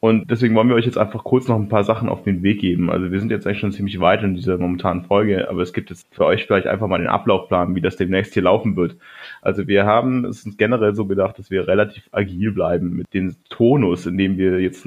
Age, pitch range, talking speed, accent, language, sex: 30-49, 100-115 Hz, 260 wpm, German, German, male